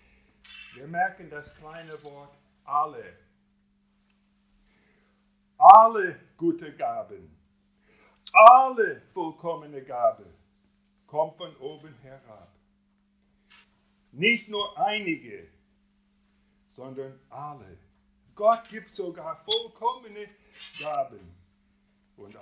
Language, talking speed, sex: German, 70 wpm, male